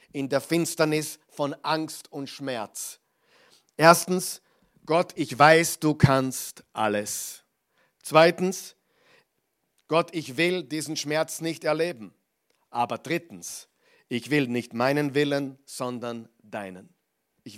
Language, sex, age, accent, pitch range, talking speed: German, male, 50-69, German, 130-160 Hz, 110 wpm